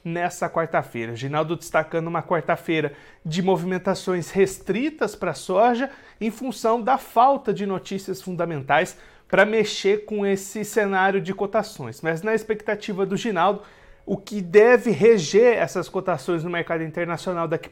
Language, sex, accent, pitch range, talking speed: Portuguese, male, Brazilian, 170-205 Hz, 140 wpm